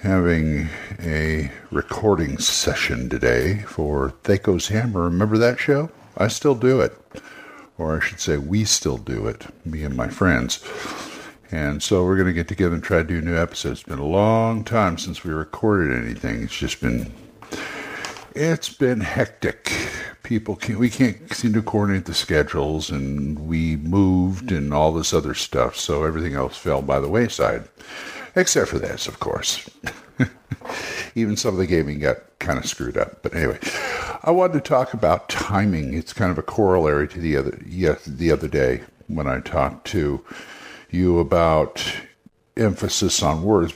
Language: English